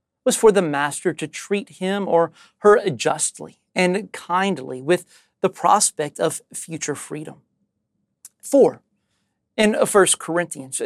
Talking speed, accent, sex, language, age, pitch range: 120 wpm, American, male, English, 40-59, 155-215 Hz